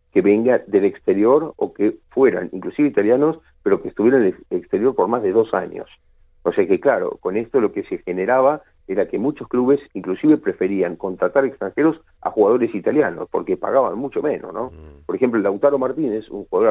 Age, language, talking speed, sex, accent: 50-69, Spanish, 185 wpm, male, Argentinian